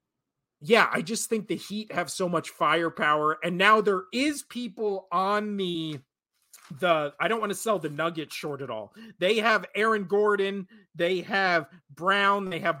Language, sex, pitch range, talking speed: English, male, 165-205 Hz, 175 wpm